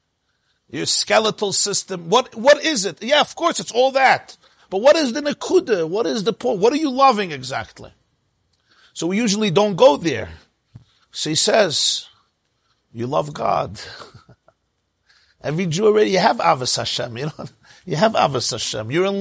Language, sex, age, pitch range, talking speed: English, male, 50-69, 175-245 Hz, 170 wpm